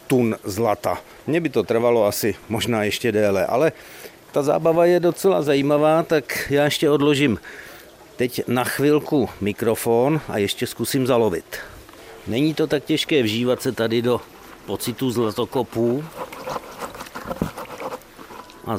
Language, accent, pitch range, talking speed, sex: Czech, native, 115-140 Hz, 120 wpm, male